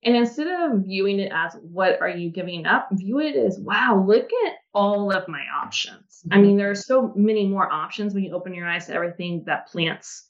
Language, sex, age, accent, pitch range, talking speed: English, female, 30-49, American, 180-230 Hz, 220 wpm